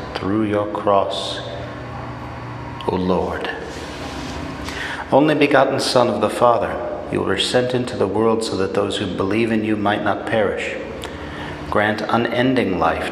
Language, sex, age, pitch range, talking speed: English, male, 40-59, 80-115 Hz, 135 wpm